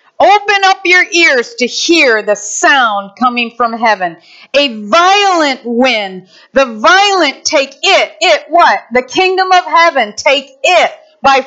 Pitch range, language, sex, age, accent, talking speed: 225-330 Hz, English, female, 40-59, American, 140 wpm